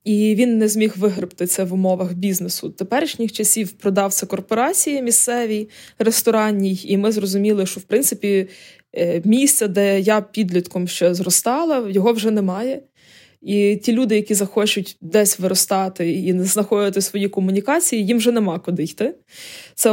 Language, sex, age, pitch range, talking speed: Ukrainian, female, 20-39, 190-230 Hz, 150 wpm